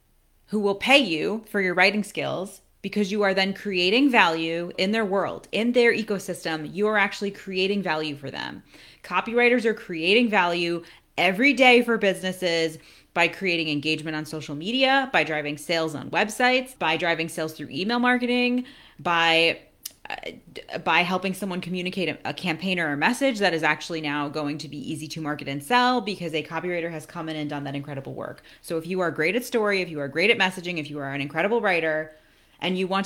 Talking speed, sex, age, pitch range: 195 wpm, female, 20-39, 160-205 Hz